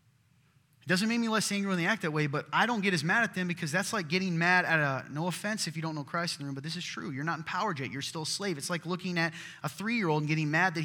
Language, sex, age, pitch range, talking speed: English, male, 30-49, 130-180 Hz, 320 wpm